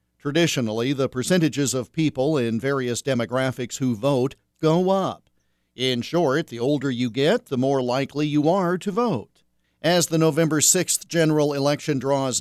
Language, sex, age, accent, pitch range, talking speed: English, male, 50-69, American, 130-165 Hz, 155 wpm